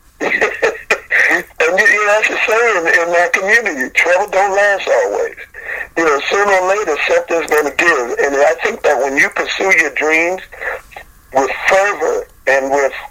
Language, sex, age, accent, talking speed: English, male, 50-69, American, 160 wpm